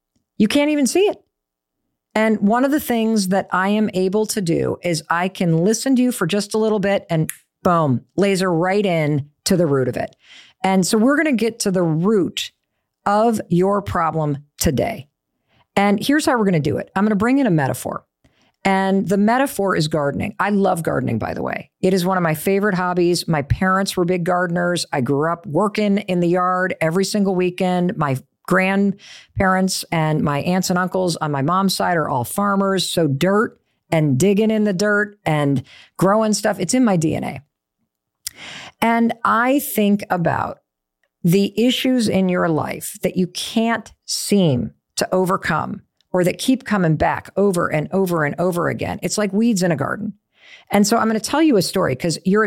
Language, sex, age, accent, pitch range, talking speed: English, female, 50-69, American, 170-210 Hz, 195 wpm